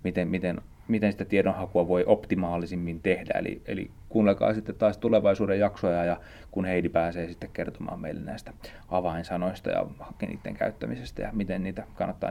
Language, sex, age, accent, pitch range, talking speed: Finnish, male, 30-49, native, 95-115 Hz, 155 wpm